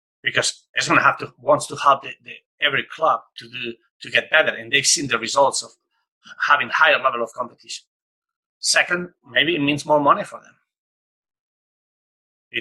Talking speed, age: 170 wpm, 30-49